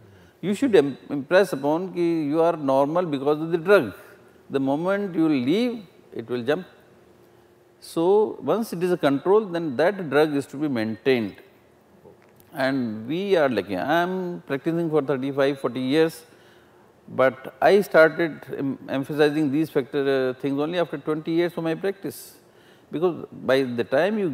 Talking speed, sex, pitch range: 160 wpm, male, 140-185 Hz